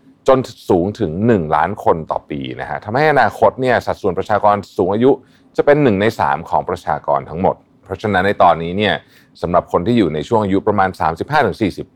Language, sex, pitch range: Thai, male, 85-115 Hz